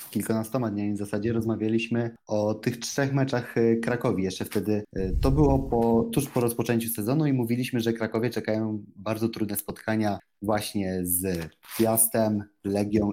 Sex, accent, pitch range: male, native, 105-130 Hz